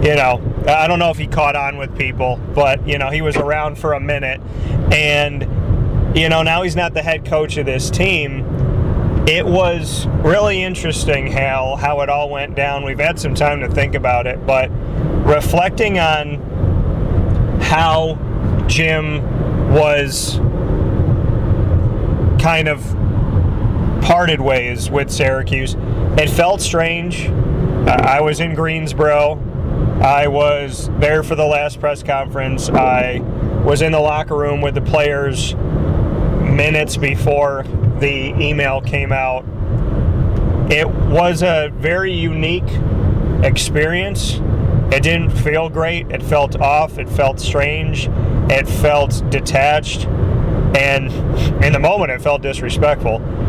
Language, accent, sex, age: English, American, male, 30-49